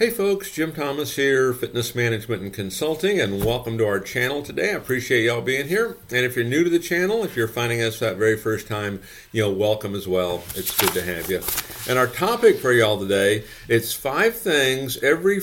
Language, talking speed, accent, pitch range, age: English, 215 wpm, American, 105-130 Hz, 50-69